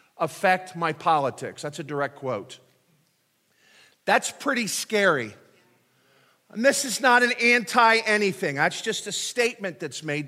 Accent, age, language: American, 50-69, English